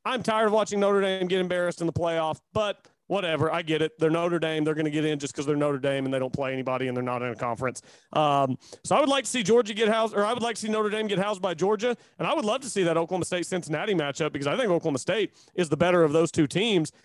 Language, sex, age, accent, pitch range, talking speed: English, male, 30-49, American, 155-210 Hz, 295 wpm